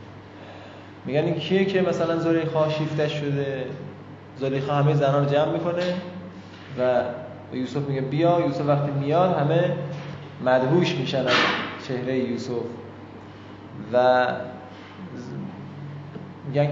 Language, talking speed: Persian, 105 wpm